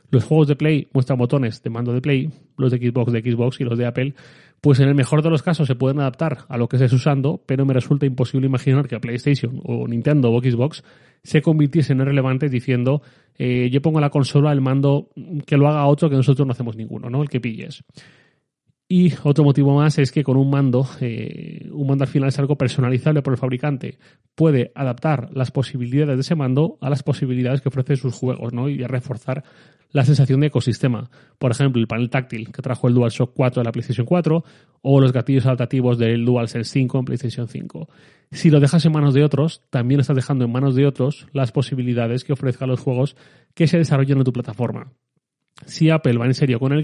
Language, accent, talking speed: Spanish, Spanish, 220 wpm